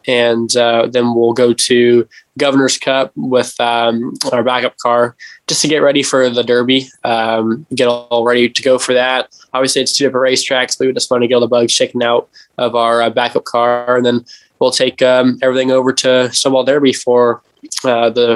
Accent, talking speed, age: American, 205 wpm, 10-29